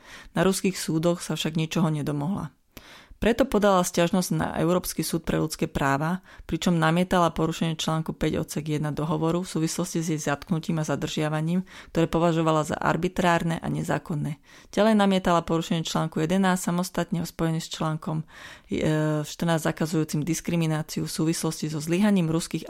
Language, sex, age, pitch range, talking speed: Slovak, female, 30-49, 160-180 Hz, 145 wpm